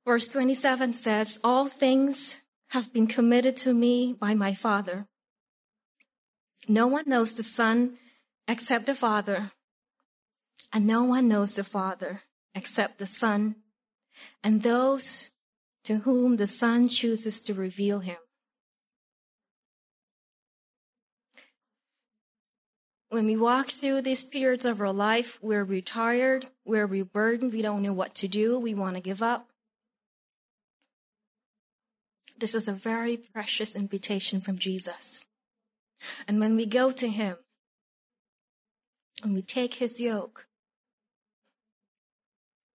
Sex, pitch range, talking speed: female, 210-245 Hz, 115 wpm